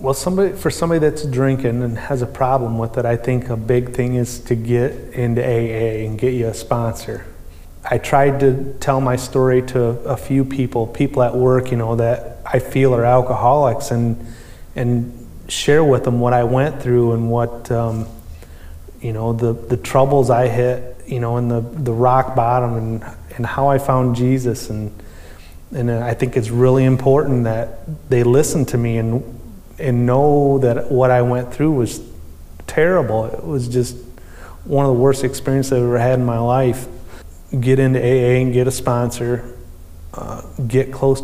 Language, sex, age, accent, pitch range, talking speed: English, male, 30-49, American, 115-130 Hz, 180 wpm